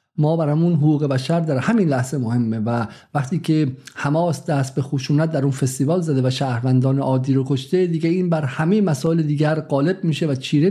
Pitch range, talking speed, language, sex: 135-160 Hz, 190 wpm, Persian, male